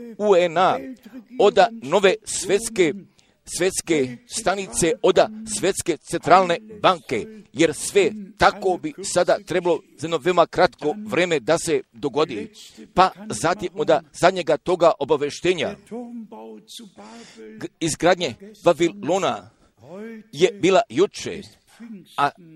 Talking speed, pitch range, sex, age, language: 100 wpm, 165-215 Hz, male, 50-69, Croatian